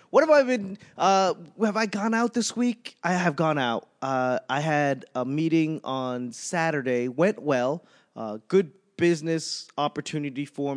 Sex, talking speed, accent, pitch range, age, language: male, 160 wpm, American, 120-180 Hz, 20-39, English